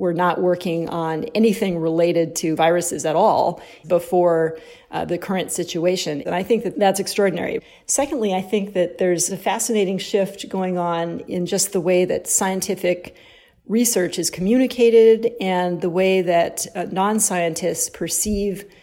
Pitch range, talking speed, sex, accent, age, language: 175-205 Hz, 150 wpm, female, American, 40-59, English